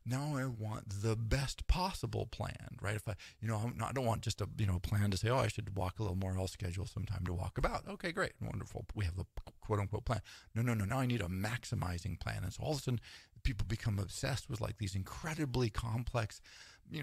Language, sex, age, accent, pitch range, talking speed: English, male, 40-59, American, 100-120 Hz, 250 wpm